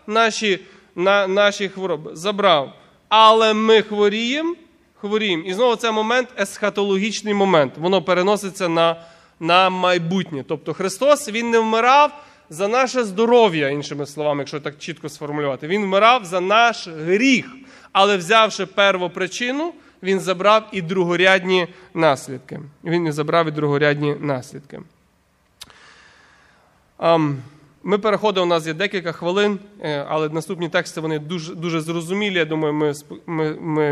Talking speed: 130 wpm